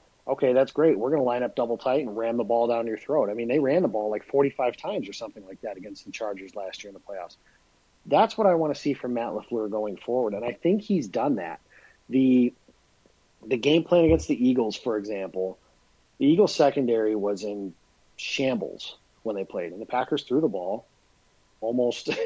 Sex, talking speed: male, 215 wpm